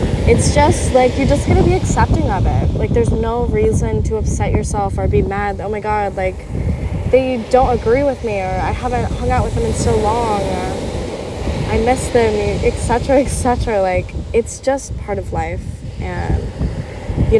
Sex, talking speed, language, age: female, 185 wpm, English, 10-29